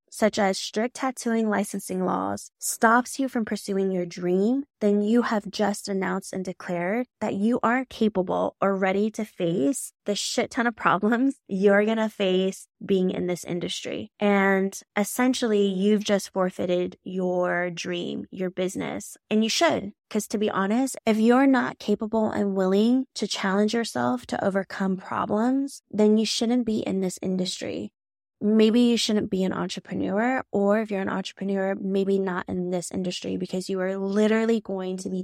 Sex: female